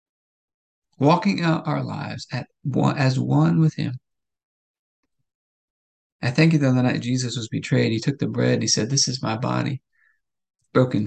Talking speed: 170 wpm